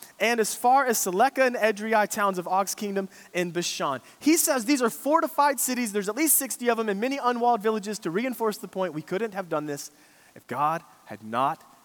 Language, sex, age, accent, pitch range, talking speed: English, male, 30-49, American, 165-260 Hz, 215 wpm